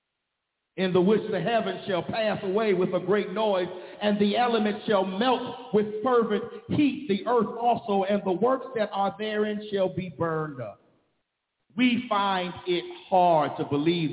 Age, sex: 50-69, male